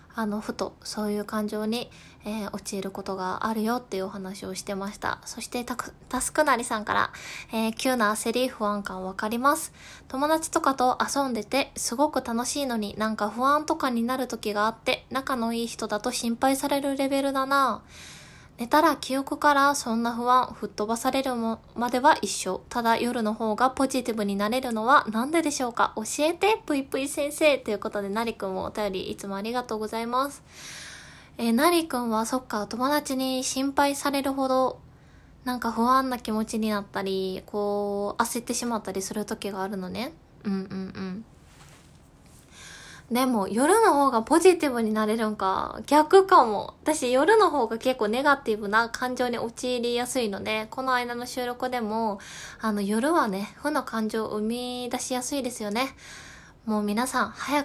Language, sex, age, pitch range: Japanese, female, 20-39, 215-265 Hz